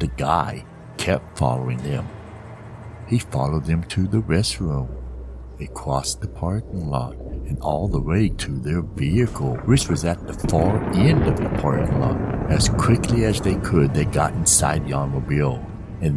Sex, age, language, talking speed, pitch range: male, 60-79, English, 165 wpm, 70-100 Hz